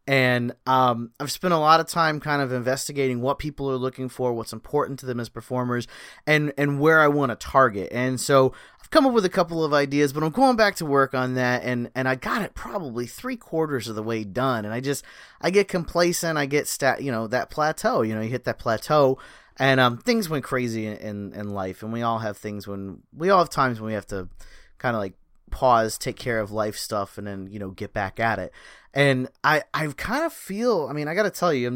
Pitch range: 115-150 Hz